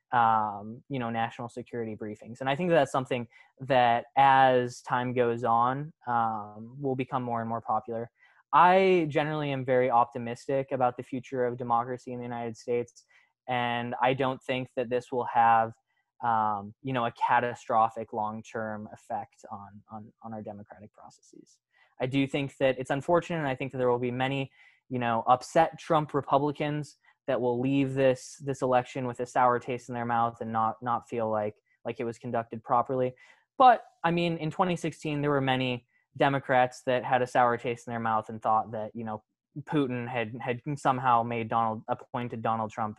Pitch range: 115-135 Hz